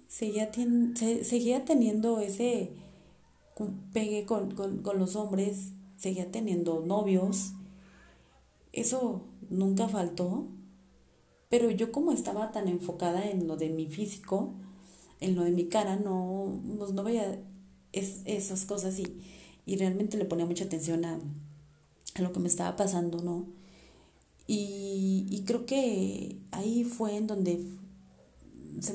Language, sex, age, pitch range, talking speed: Spanish, female, 30-49, 175-210 Hz, 125 wpm